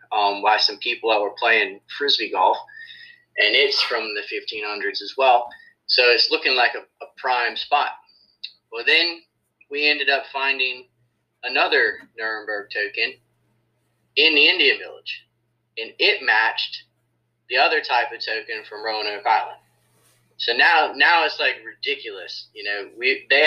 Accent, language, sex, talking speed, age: American, English, male, 150 wpm, 30-49